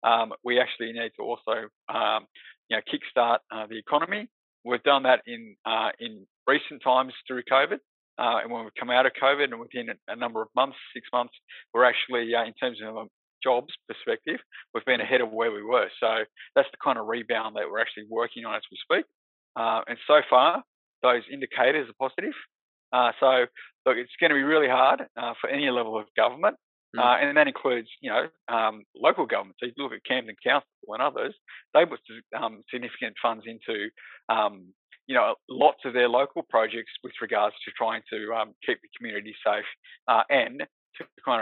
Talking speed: 195 wpm